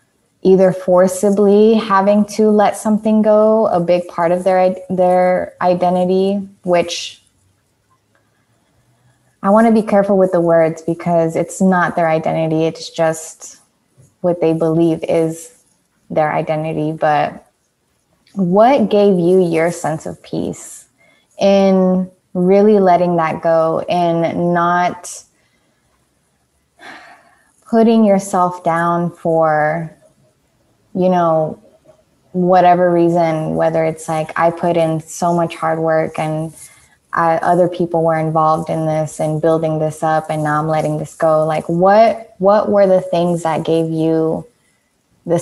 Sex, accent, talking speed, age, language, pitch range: female, American, 125 wpm, 20-39, English, 160-185 Hz